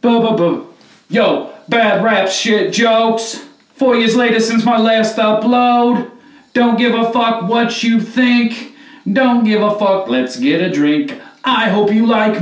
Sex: male